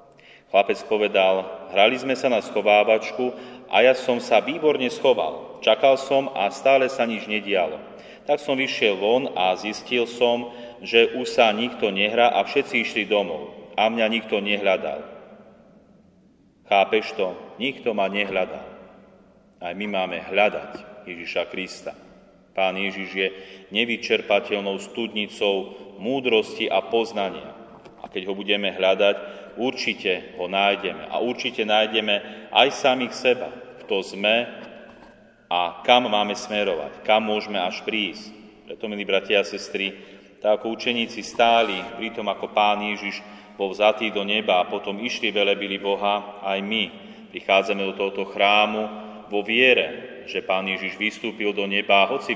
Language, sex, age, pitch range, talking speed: Slovak, male, 30-49, 100-110 Hz, 140 wpm